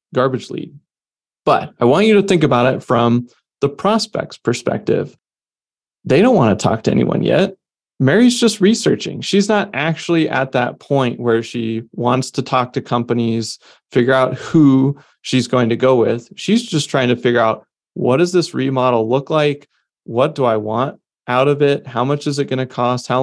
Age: 30-49